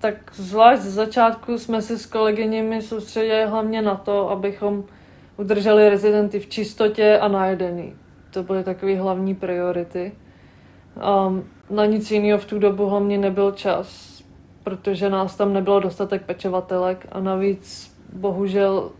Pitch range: 185-200 Hz